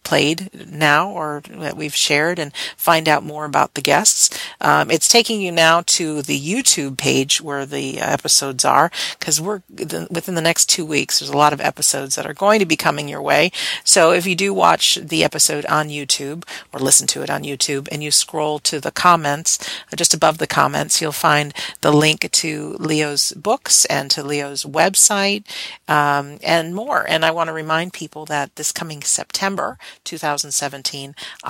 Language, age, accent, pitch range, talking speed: English, 40-59, American, 145-175 Hz, 185 wpm